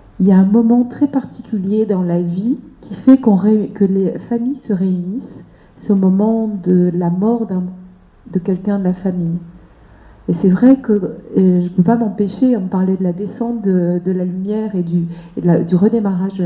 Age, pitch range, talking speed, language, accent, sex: 50-69, 185-225 Hz, 210 wpm, French, French, female